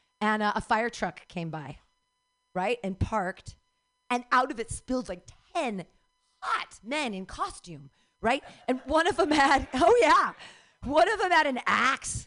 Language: English